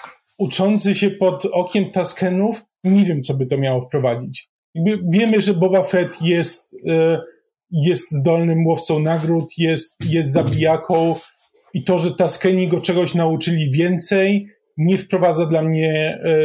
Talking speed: 130 wpm